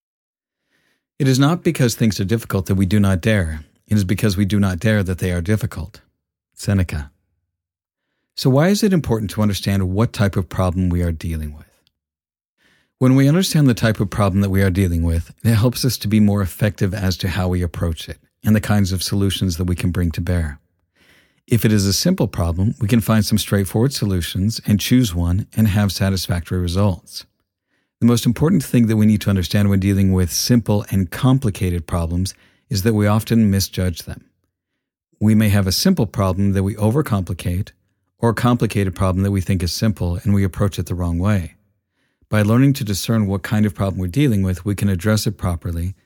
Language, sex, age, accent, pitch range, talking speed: English, male, 50-69, American, 90-110 Hz, 205 wpm